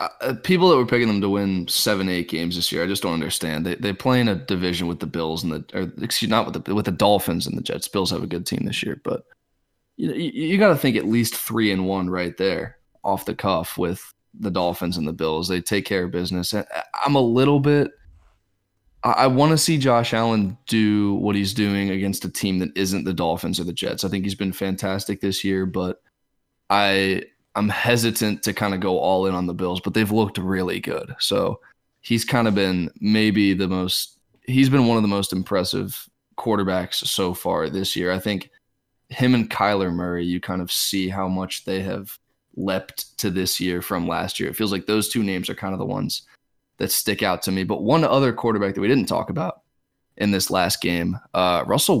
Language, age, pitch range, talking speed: English, 20-39, 90-110 Hz, 225 wpm